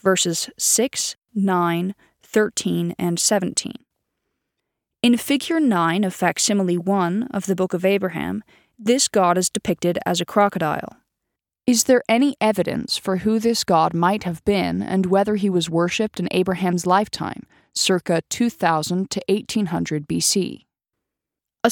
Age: 20-39